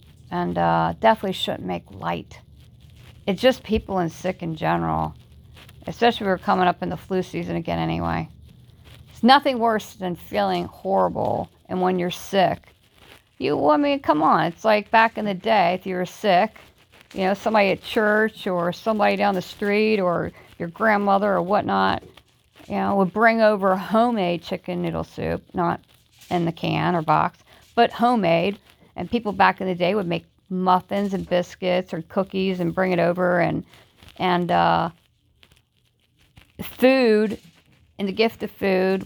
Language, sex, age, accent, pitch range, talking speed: English, female, 50-69, American, 165-205 Hz, 165 wpm